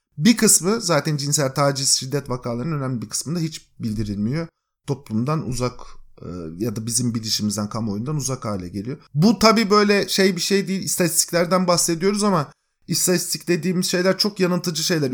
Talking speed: 150 wpm